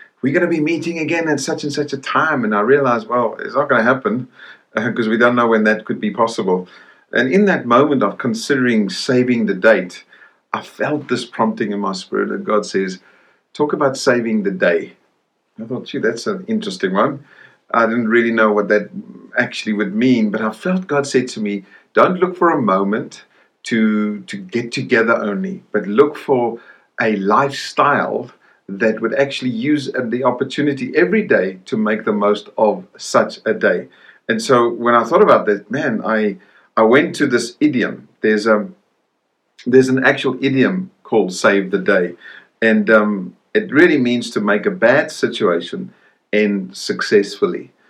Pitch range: 105-140 Hz